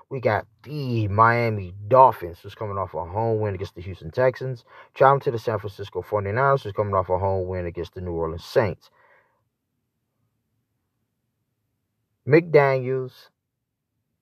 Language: English